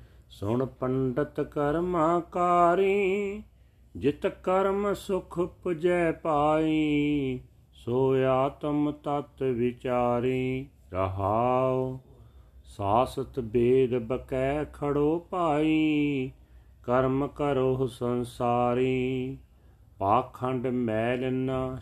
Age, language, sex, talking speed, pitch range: 40-59, Punjabi, male, 65 wpm, 125-145 Hz